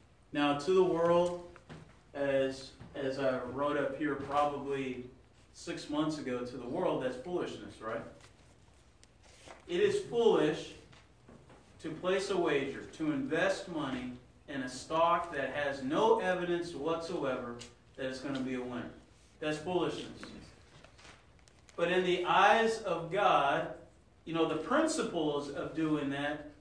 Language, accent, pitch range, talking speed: English, American, 140-185 Hz, 135 wpm